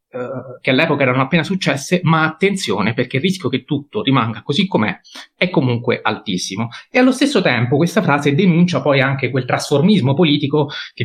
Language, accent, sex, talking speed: Italian, native, male, 175 wpm